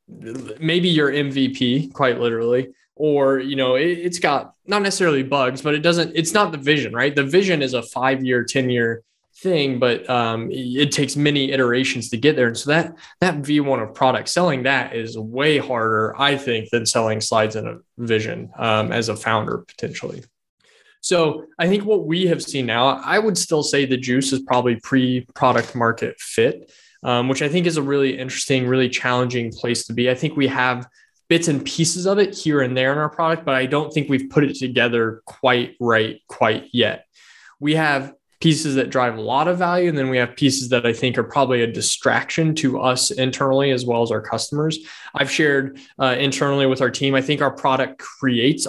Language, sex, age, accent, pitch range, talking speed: English, male, 20-39, American, 125-150 Hz, 200 wpm